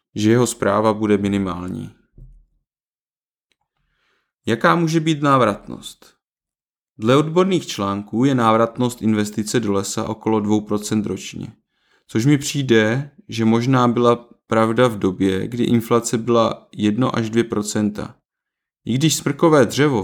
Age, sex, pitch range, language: 20-39, male, 105-125 Hz, Czech